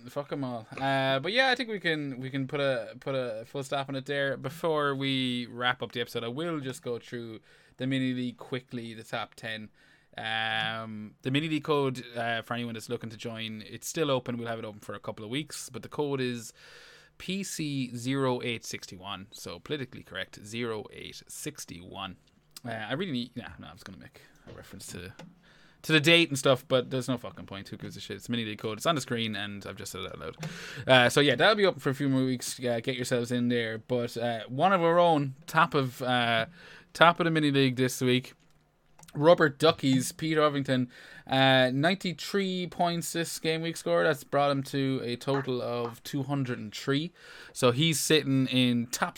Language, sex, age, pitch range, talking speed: English, male, 20-39, 120-150 Hz, 205 wpm